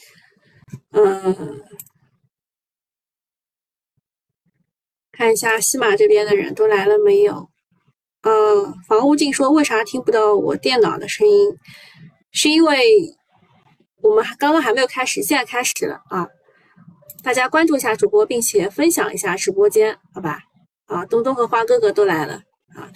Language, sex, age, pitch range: Chinese, female, 20-39, 270-420 Hz